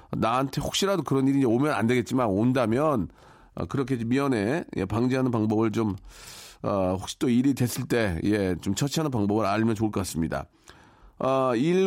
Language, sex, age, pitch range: Korean, male, 40-59, 110-145 Hz